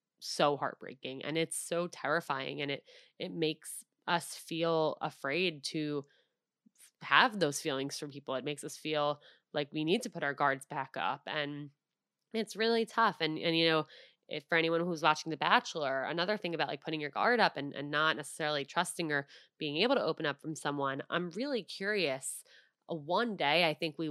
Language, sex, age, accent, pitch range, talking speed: English, female, 20-39, American, 155-180 Hz, 190 wpm